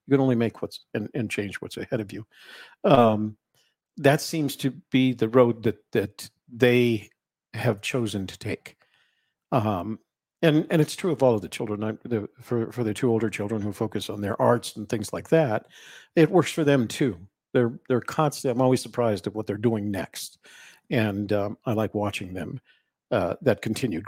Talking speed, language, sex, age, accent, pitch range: 195 wpm, English, male, 50-69, American, 105-130 Hz